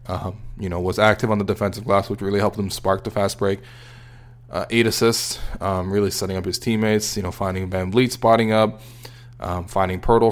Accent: American